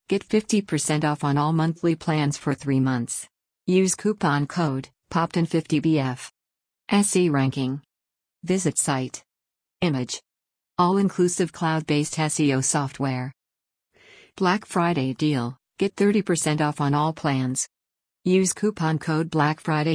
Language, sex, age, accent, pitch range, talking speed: English, female, 50-69, American, 130-170 Hz, 110 wpm